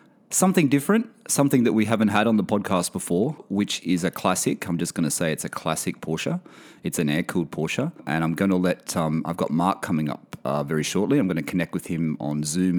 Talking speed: 230 wpm